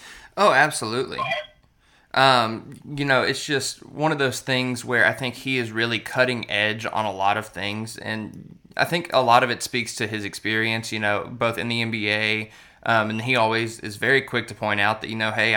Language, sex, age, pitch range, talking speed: English, male, 20-39, 110-125 Hz, 210 wpm